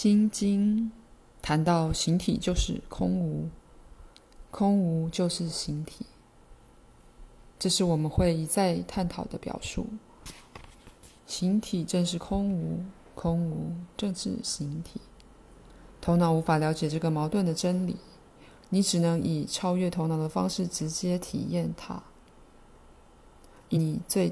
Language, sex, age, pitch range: Chinese, female, 20-39, 160-185 Hz